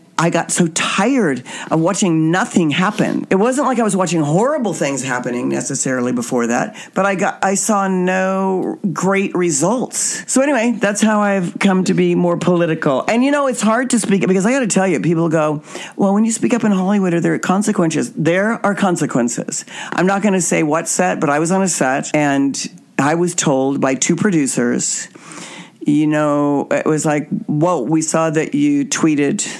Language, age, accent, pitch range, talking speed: English, 50-69, American, 150-195 Hz, 195 wpm